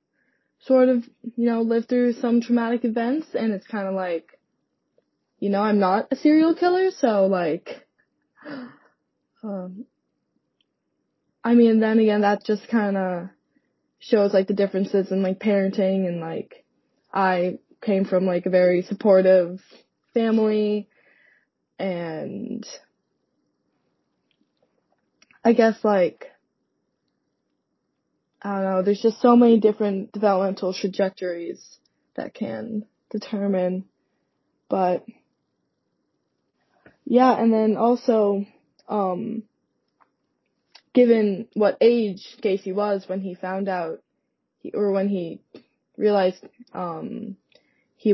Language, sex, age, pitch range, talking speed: English, female, 20-39, 185-230 Hz, 110 wpm